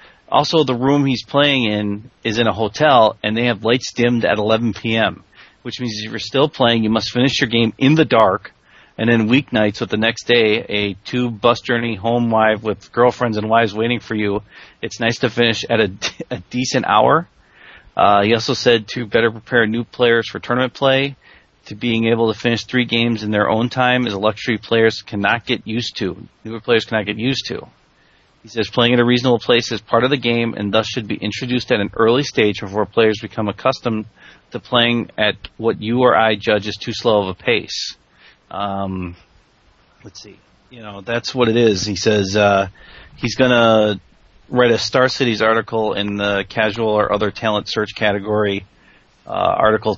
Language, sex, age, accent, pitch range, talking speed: English, male, 30-49, American, 105-120 Hz, 200 wpm